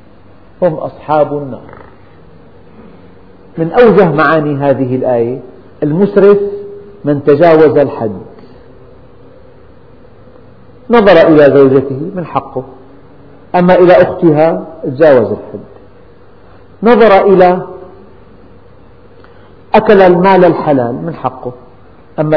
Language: Arabic